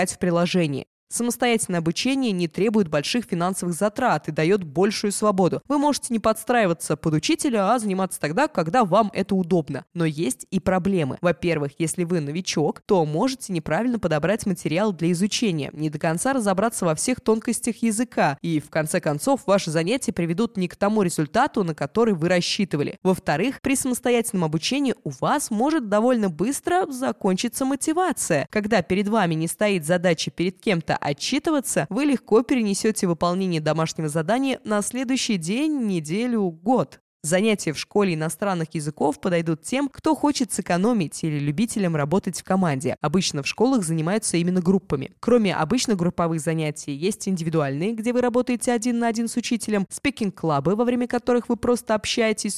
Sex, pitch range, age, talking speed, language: female, 170-230 Hz, 20-39, 155 wpm, Russian